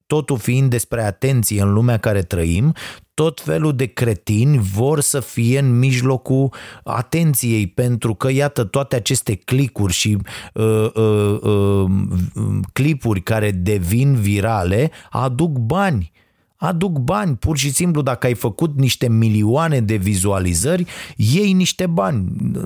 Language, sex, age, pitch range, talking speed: Romanian, male, 30-49, 105-140 Hz, 120 wpm